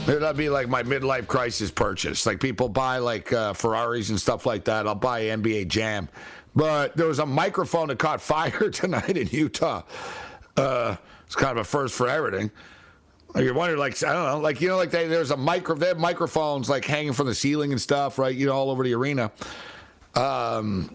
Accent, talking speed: American, 205 wpm